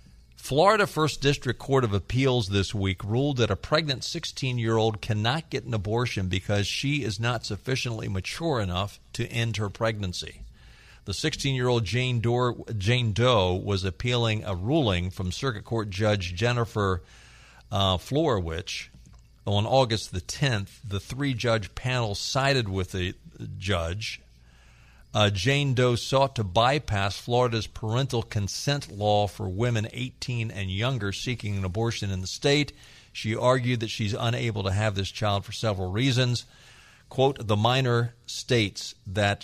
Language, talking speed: English, 150 wpm